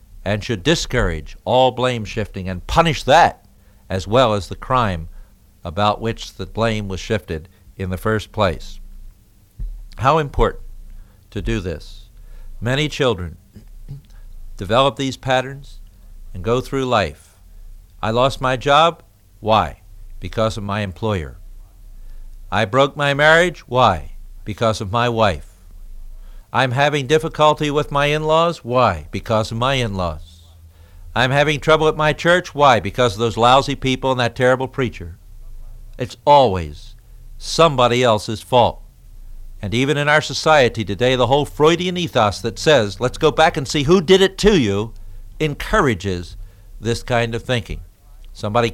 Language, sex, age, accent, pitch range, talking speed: English, male, 60-79, American, 95-135 Hz, 145 wpm